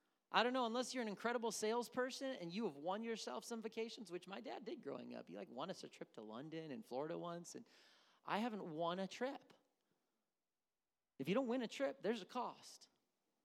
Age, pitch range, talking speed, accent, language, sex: 30-49, 140-200 Hz, 210 wpm, American, English, male